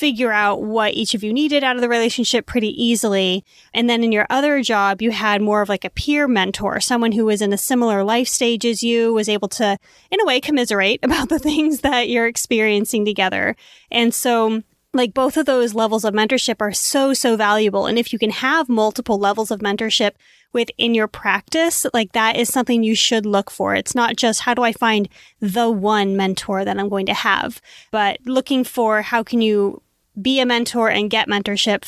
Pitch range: 210-250 Hz